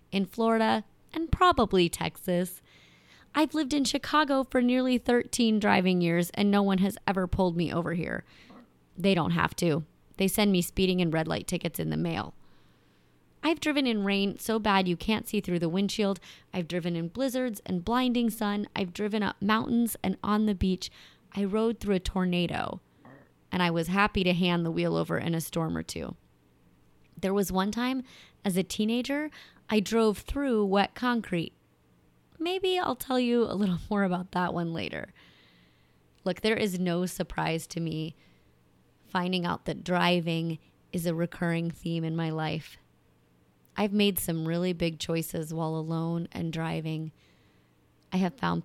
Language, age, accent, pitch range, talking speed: English, 30-49, American, 165-210 Hz, 170 wpm